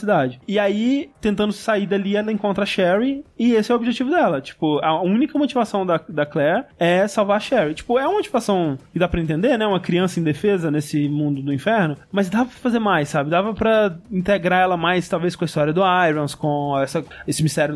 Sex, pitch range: male, 150-200 Hz